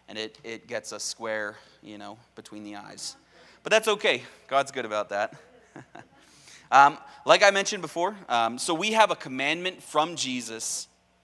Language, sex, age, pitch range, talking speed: English, male, 30-49, 110-160 Hz, 165 wpm